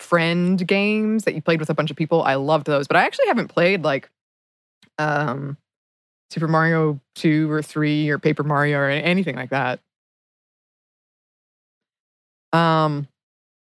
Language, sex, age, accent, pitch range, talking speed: English, female, 20-39, American, 155-195 Hz, 145 wpm